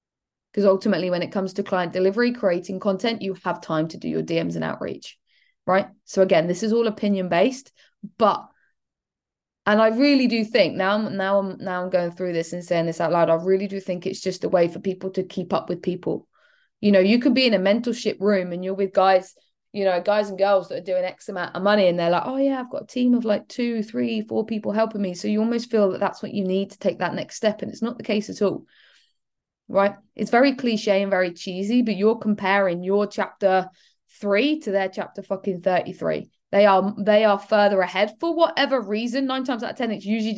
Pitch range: 185-215 Hz